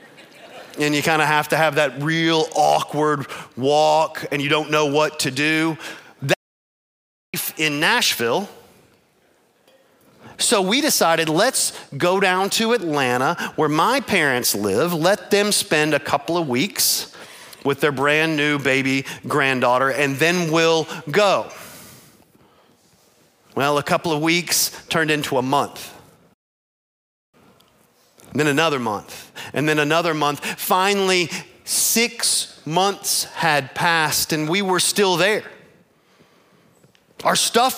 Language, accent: English, American